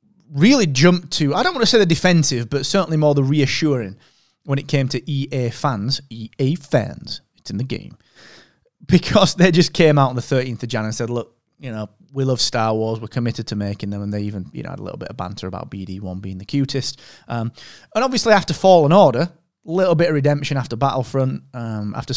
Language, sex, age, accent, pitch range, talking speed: English, male, 30-49, British, 110-150 Hz, 220 wpm